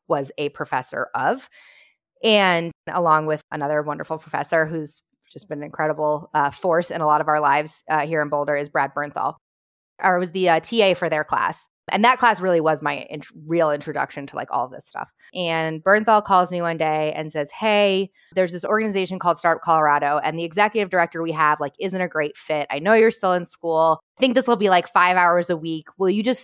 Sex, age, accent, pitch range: female, 20-39, American, 155-185 Hz